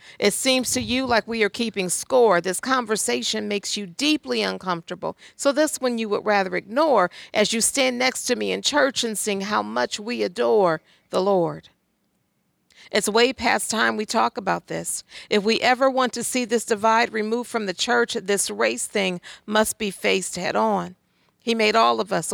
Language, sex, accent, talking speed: English, female, American, 190 wpm